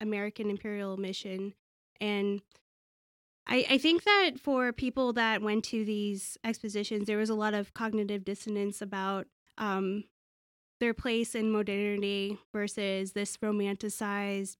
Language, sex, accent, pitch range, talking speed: English, female, American, 200-225 Hz, 125 wpm